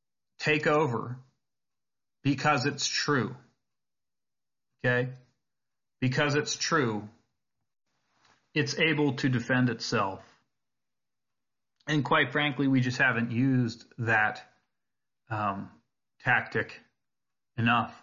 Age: 30-49